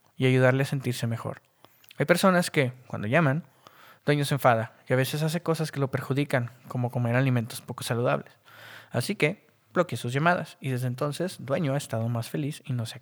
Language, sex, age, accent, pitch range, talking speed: Spanish, male, 20-39, Mexican, 125-160 Hz, 200 wpm